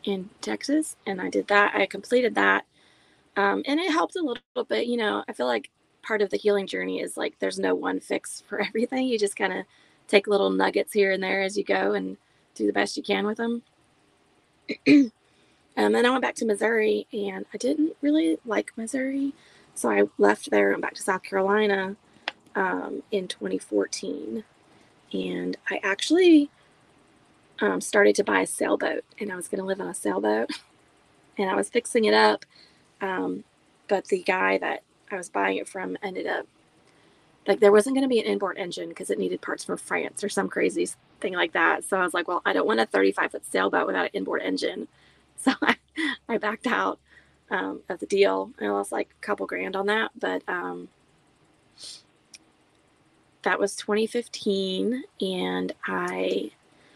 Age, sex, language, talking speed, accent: 20-39, female, English, 190 wpm, American